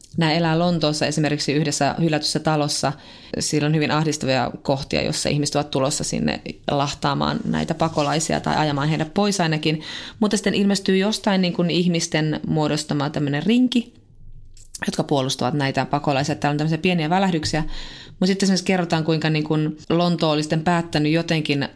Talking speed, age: 155 wpm, 30-49